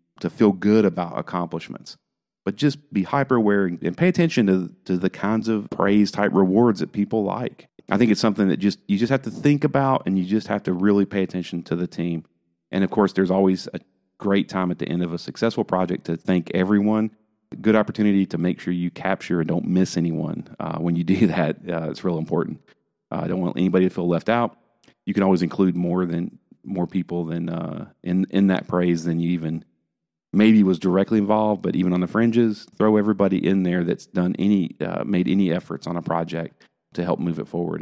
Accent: American